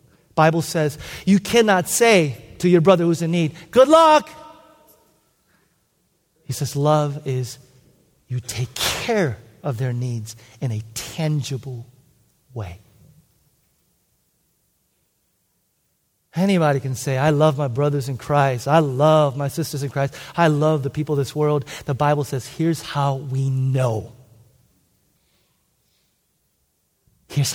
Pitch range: 130-215 Hz